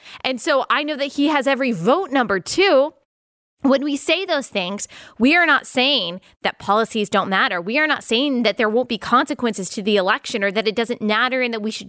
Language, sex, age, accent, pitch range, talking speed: English, female, 20-39, American, 205-280 Hz, 225 wpm